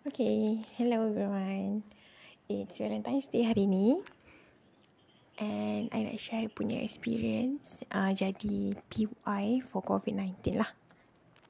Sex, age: female, 20-39